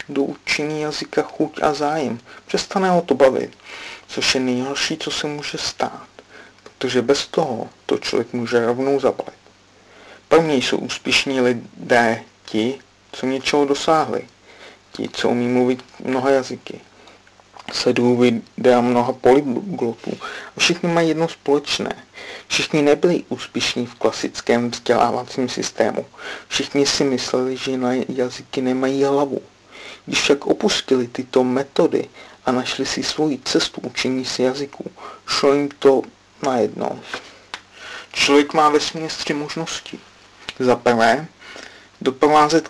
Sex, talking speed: male, 125 wpm